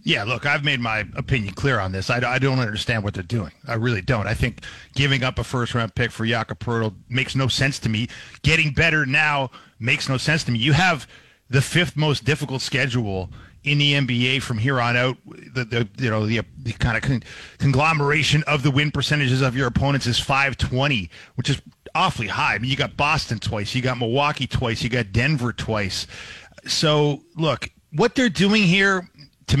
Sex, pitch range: male, 115-150 Hz